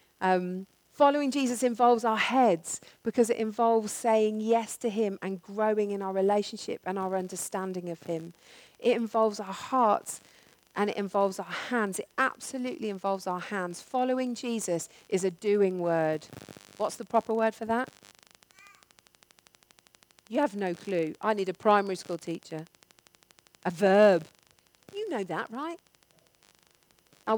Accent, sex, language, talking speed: British, female, English, 145 wpm